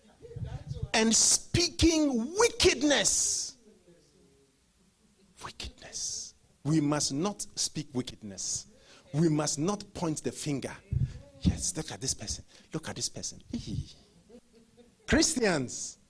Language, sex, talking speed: English, male, 95 wpm